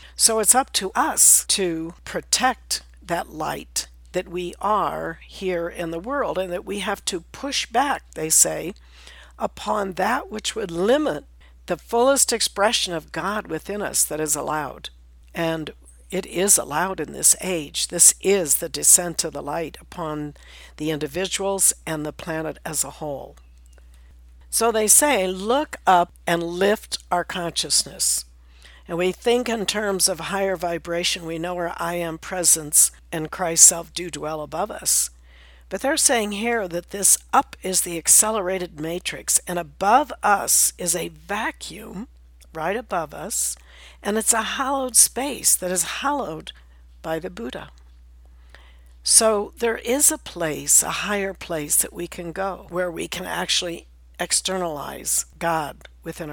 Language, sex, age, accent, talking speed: English, female, 60-79, American, 150 wpm